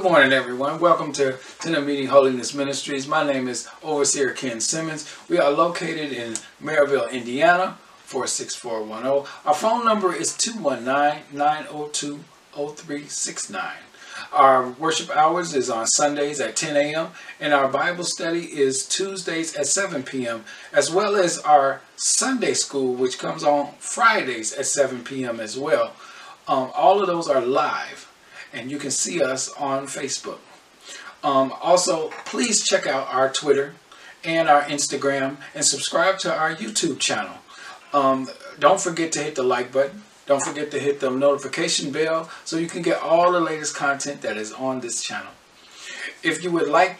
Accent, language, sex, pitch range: American, English, male, 140-170 Hz